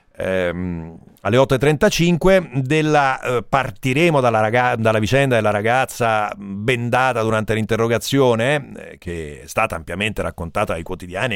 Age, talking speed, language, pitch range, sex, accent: 40-59, 120 wpm, Italian, 105-150 Hz, male, native